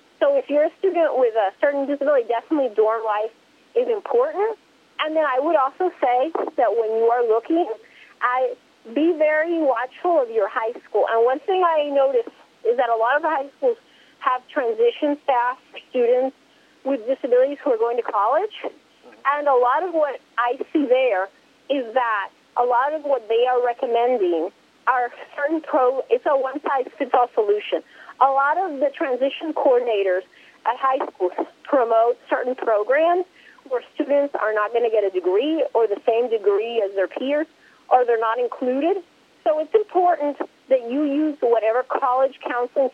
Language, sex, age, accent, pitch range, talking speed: English, female, 40-59, American, 240-325 Hz, 170 wpm